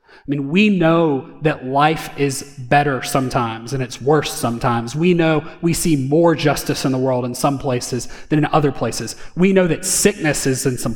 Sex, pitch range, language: male, 130-160 Hz, English